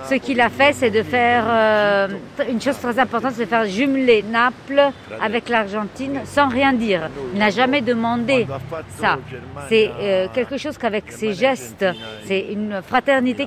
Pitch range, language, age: 180-240 Hz, French, 40-59